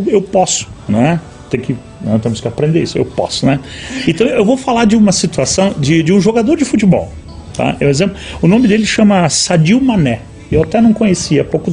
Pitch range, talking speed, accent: 140-235 Hz, 205 wpm, Brazilian